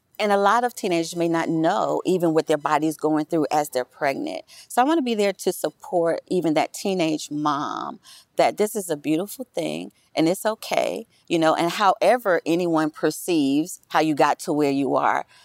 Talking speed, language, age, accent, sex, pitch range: 200 wpm, English, 40-59, American, female, 155-210 Hz